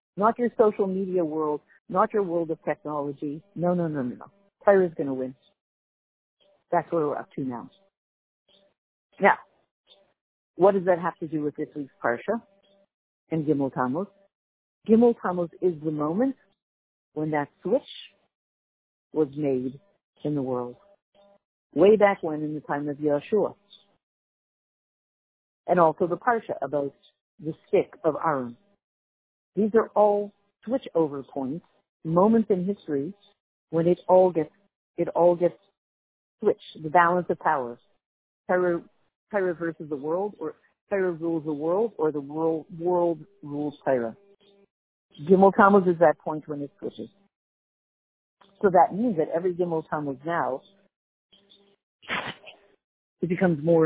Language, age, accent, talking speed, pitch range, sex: English, 50-69, American, 140 wpm, 150-200 Hz, female